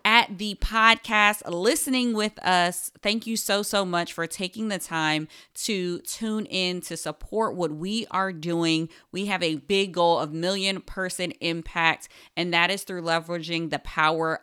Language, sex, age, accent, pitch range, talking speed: English, female, 30-49, American, 160-205 Hz, 165 wpm